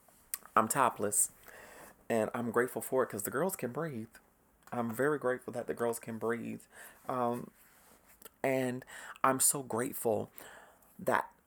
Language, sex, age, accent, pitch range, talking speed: English, male, 30-49, American, 115-130 Hz, 135 wpm